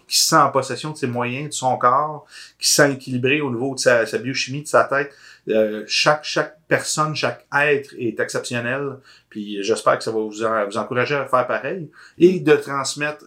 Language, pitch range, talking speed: French, 115-145 Hz, 205 wpm